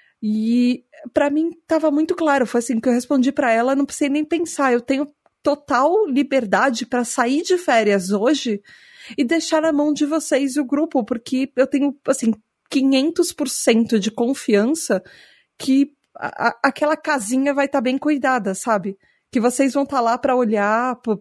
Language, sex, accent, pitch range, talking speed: Portuguese, female, Brazilian, 245-320 Hz, 175 wpm